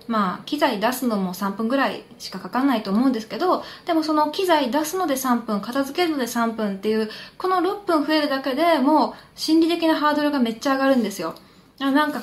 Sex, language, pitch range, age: female, Japanese, 210-300 Hz, 20-39